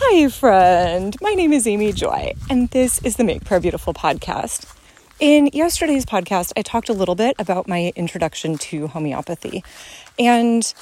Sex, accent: female, American